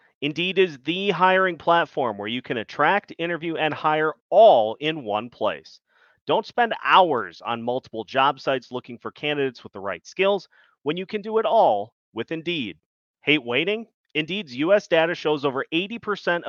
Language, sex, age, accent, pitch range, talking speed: English, male, 30-49, American, 130-185 Hz, 165 wpm